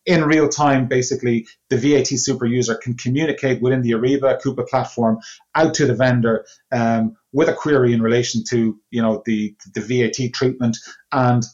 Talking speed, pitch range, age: 170 wpm, 115-140 Hz, 30-49